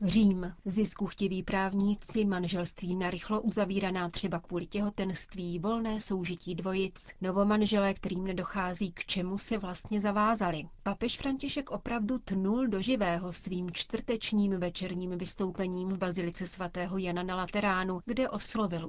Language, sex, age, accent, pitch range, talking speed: Czech, female, 40-59, native, 180-205 Hz, 120 wpm